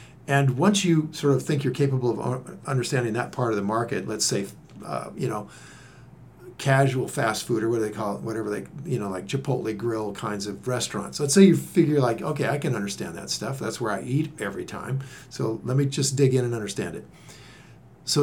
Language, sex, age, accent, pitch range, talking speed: English, male, 50-69, American, 120-150 Hz, 215 wpm